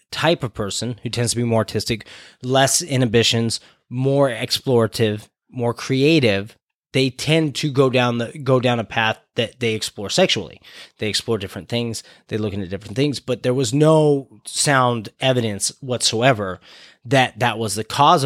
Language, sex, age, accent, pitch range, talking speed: English, male, 30-49, American, 110-135 Hz, 165 wpm